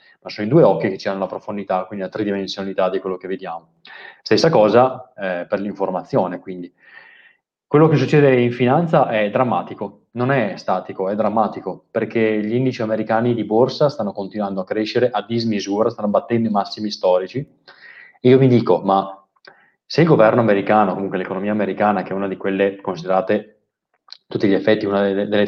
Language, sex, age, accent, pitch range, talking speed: Italian, male, 20-39, native, 100-115 Hz, 180 wpm